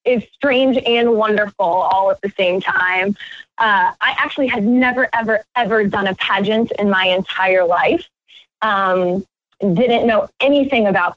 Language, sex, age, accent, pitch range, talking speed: English, female, 10-29, American, 190-240 Hz, 150 wpm